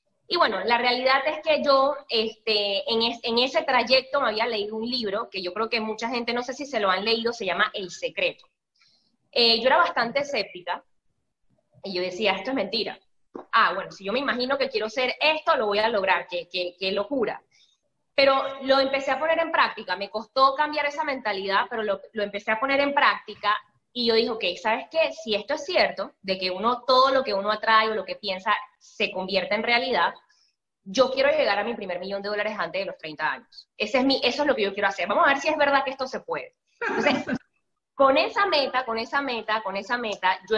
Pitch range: 195-265 Hz